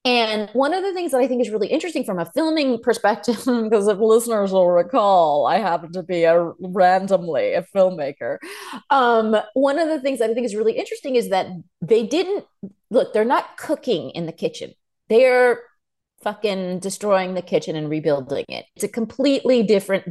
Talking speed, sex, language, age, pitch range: 190 wpm, female, English, 30-49, 185-260 Hz